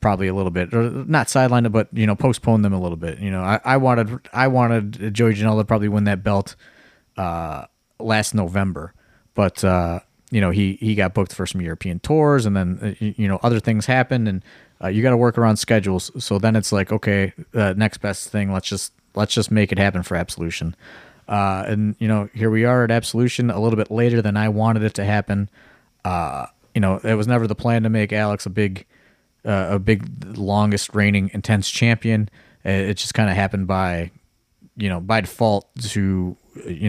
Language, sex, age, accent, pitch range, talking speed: English, male, 30-49, American, 100-115 Hz, 210 wpm